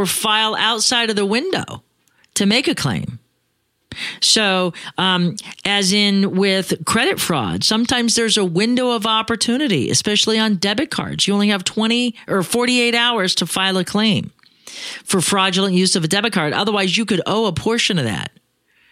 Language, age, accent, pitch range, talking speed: English, 40-59, American, 175-220 Hz, 165 wpm